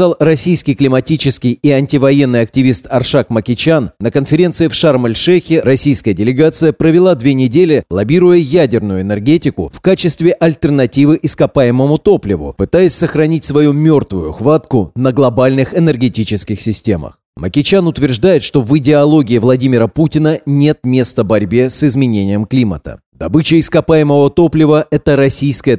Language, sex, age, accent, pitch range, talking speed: Russian, male, 30-49, native, 120-155 Hz, 120 wpm